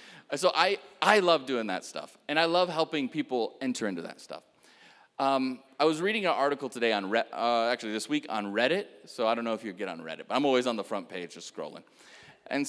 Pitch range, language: 115-165 Hz, English